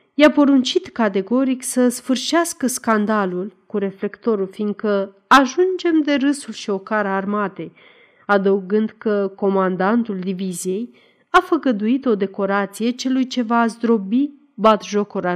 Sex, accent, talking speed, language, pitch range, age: female, native, 115 wpm, Romanian, 195-280 Hz, 40-59